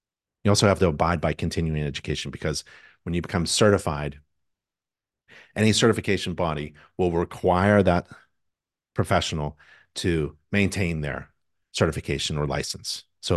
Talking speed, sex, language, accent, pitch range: 120 wpm, male, English, American, 80-100 Hz